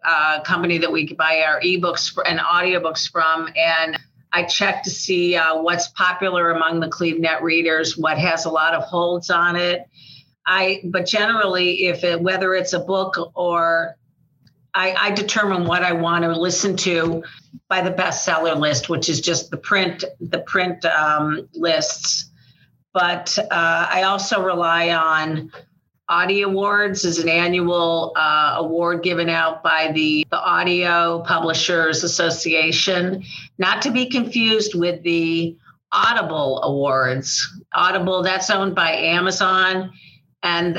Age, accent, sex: 50-69, American, female